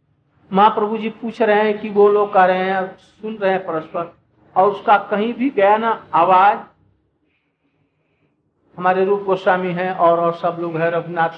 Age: 60-79